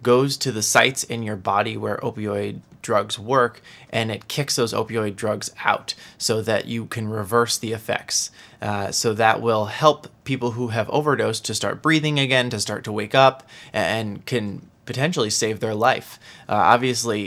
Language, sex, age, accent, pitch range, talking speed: English, male, 20-39, American, 110-125 Hz, 175 wpm